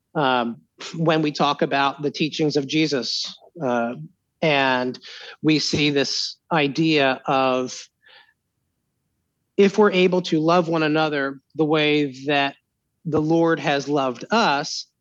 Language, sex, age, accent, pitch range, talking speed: English, male, 30-49, American, 140-175 Hz, 125 wpm